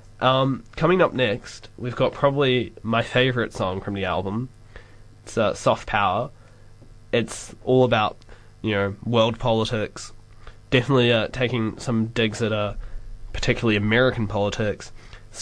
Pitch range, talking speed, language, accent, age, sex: 105-120 Hz, 135 wpm, English, Australian, 20-39, male